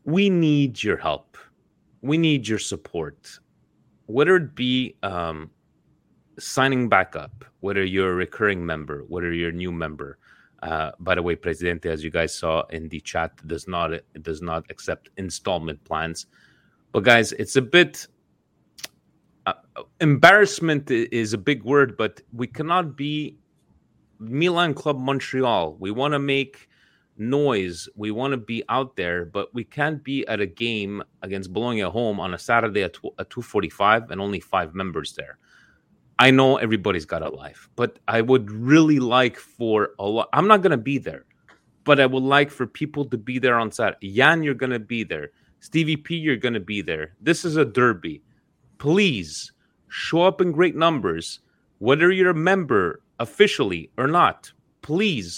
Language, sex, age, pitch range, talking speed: Italian, male, 30-49, 95-150 Hz, 170 wpm